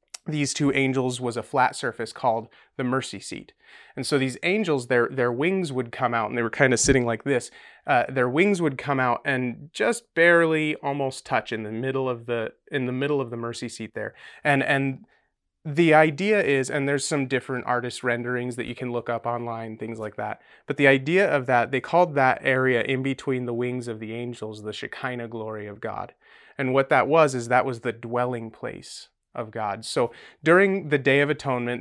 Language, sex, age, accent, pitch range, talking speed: English, male, 30-49, American, 120-145 Hz, 210 wpm